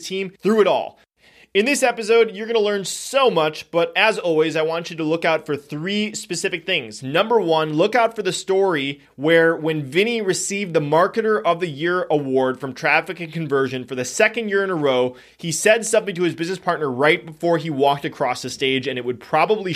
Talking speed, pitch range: 220 wpm, 140-185 Hz